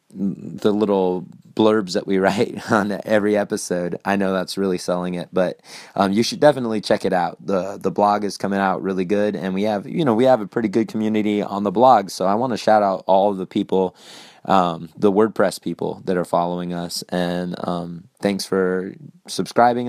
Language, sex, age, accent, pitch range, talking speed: English, male, 20-39, American, 95-110 Hz, 200 wpm